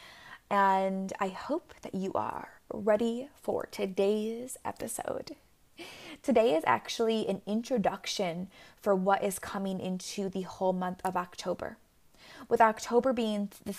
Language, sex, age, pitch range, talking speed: English, female, 20-39, 190-220 Hz, 125 wpm